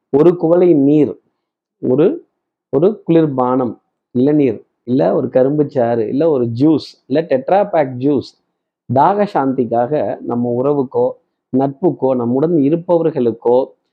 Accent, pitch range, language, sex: native, 135-195 Hz, Tamil, male